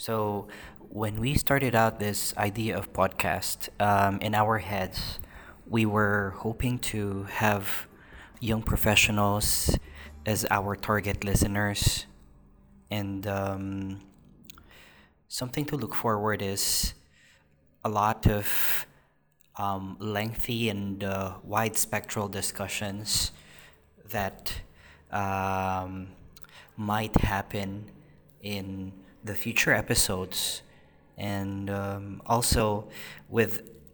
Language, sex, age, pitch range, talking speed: English, male, 20-39, 100-110 Hz, 90 wpm